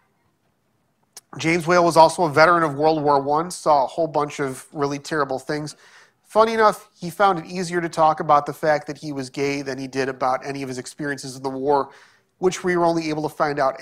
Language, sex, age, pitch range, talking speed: English, male, 30-49, 145-185 Hz, 225 wpm